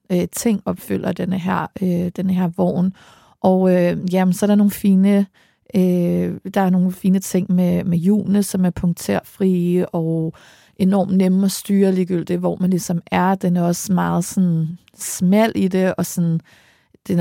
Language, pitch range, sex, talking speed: Danish, 175-190 Hz, female, 170 wpm